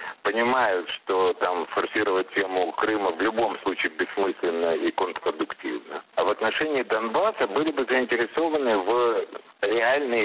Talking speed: 125 wpm